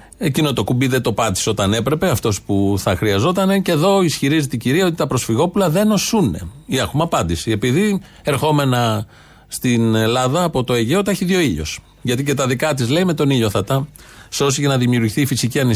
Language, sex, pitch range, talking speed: Greek, male, 110-140 Hz, 200 wpm